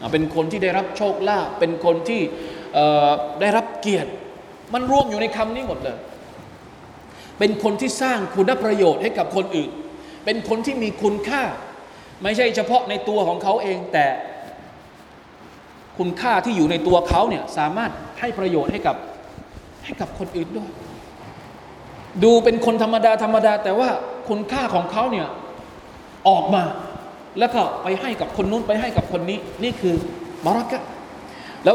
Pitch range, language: 165-230 Hz, Thai